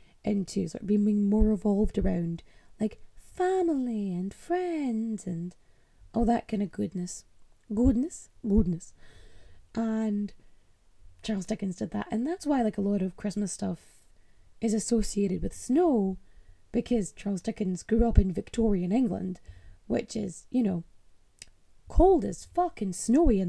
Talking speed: 140 wpm